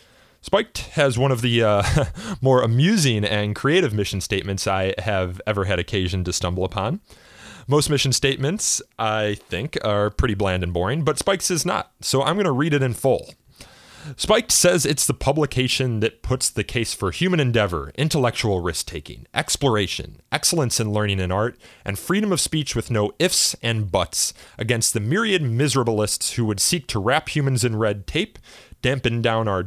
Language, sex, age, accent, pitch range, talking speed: English, male, 30-49, American, 100-140 Hz, 175 wpm